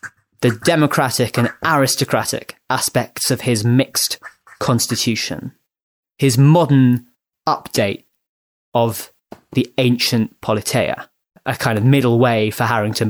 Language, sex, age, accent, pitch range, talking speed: English, male, 20-39, British, 120-150 Hz, 105 wpm